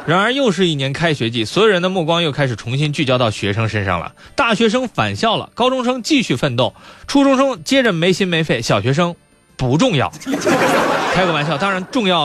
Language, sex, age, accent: Chinese, male, 20-39, native